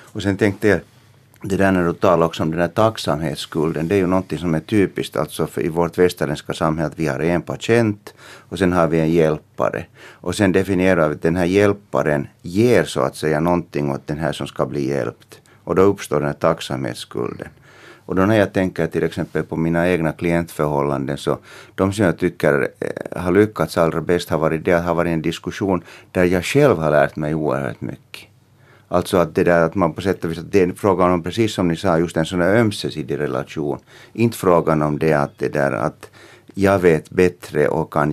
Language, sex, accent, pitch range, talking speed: Finnish, male, native, 80-95 Hz, 215 wpm